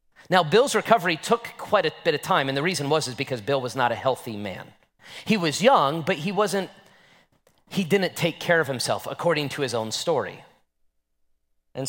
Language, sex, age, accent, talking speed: English, male, 30-49, American, 195 wpm